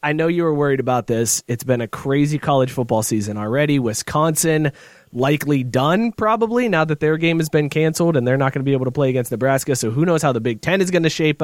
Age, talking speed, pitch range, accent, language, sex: 20-39, 250 wpm, 135-175 Hz, American, English, male